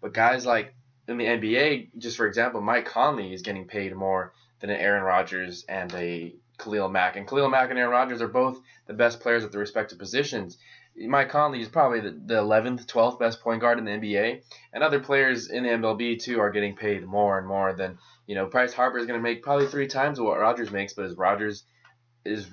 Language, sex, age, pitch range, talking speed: English, male, 20-39, 100-125 Hz, 220 wpm